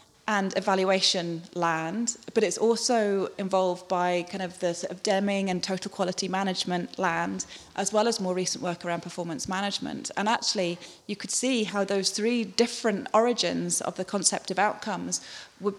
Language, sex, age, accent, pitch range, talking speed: English, female, 30-49, British, 180-205 Hz, 165 wpm